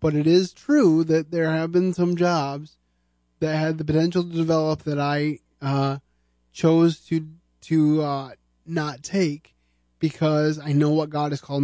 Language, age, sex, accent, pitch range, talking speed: English, 20-39, male, American, 120-155 Hz, 165 wpm